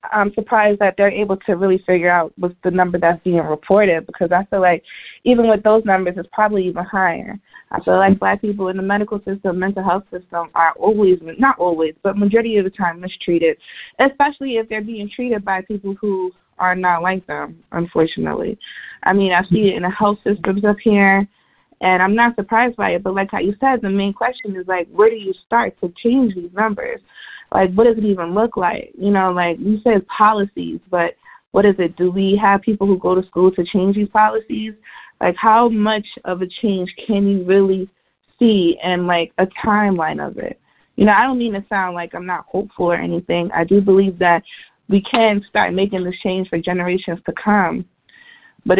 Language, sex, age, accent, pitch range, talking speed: English, female, 20-39, American, 180-210 Hz, 210 wpm